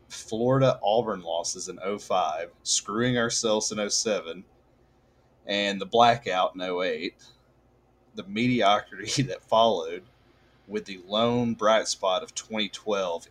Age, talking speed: 30-49, 115 wpm